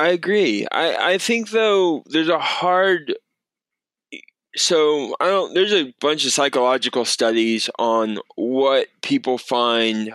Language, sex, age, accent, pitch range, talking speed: English, male, 20-39, American, 115-180 Hz, 130 wpm